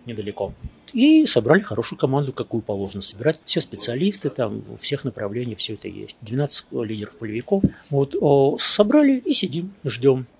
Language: Russian